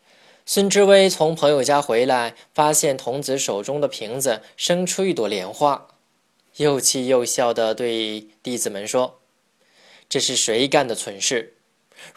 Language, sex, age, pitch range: Chinese, male, 20-39, 125-180 Hz